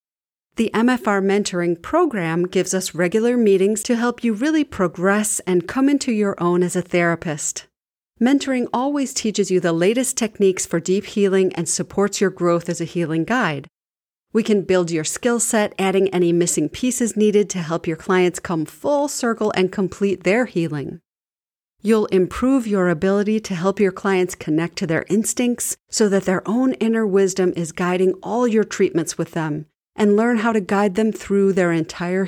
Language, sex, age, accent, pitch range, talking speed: English, female, 40-59, American, 180-235 Hz, 175 wpm